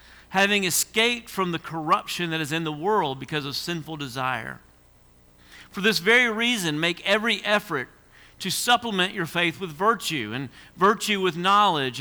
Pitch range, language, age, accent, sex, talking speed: 130-195 Hz, English, 50-69, American, male, 155 wpm